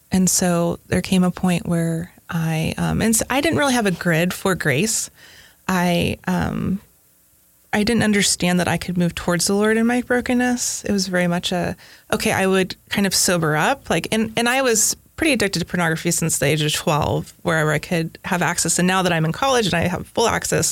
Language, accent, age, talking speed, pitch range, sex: English, American, 20-39, 220 wpm, 165-220 Hz, female